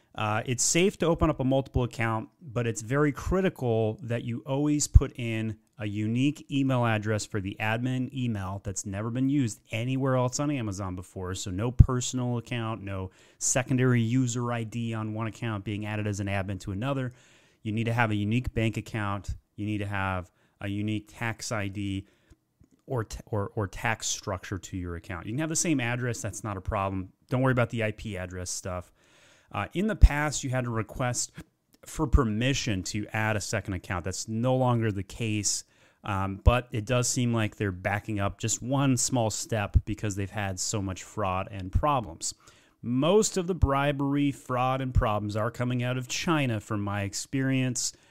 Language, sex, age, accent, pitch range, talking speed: English, male, 30-49, American, 100-125 Hz, 185 wpm